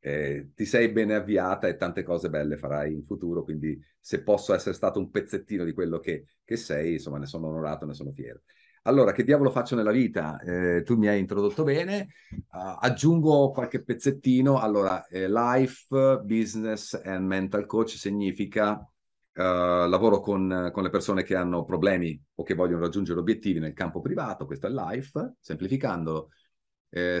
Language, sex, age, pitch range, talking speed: Italian, male, 30-49, 85-110 Hz, 170 wpm